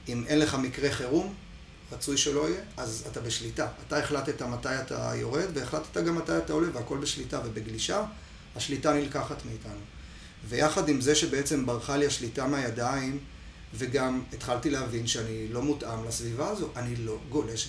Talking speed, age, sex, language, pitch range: 155 wpm, 30-49, male, Hebrew, 120-155 Hz